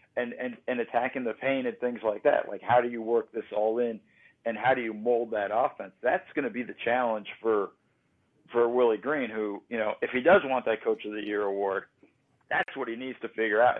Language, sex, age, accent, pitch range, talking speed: English, male, 50-69, American, 115-145 Hz, 240 wpm